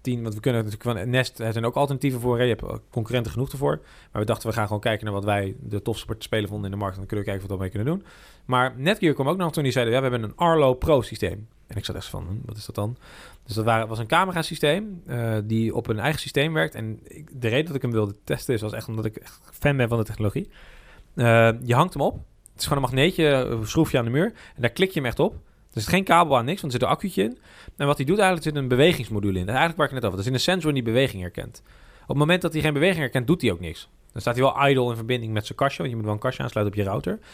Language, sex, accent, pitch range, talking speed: Dutch, male, Dutch, 110-150 Hz, 310 wpm